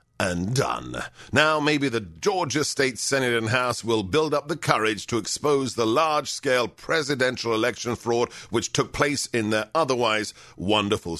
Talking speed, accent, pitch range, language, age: 155 wpm, British, 115-155 Hz, English, 50-69